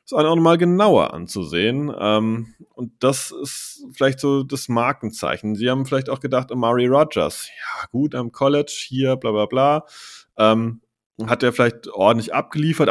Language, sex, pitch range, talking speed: German, male, 105-135 Hz, 160 wpm